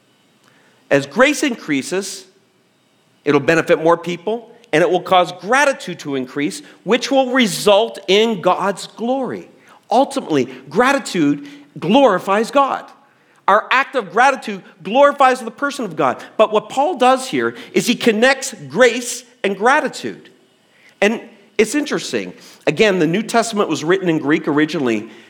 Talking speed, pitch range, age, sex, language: 135 wpm, 155-235 Hz, 40-59, male, English